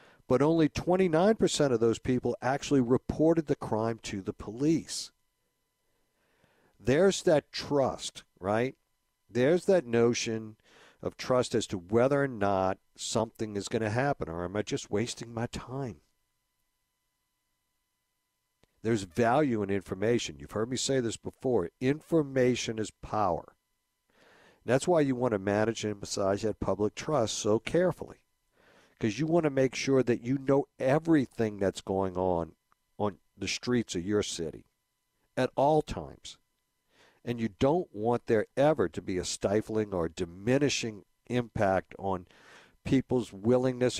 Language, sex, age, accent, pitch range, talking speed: English, male, 60-79, American, 100-130 Hz, 140 wpm